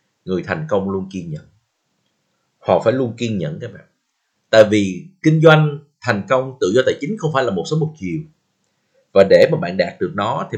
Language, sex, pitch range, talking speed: Vietnamese, male, 115-175 Hz, 215 wpm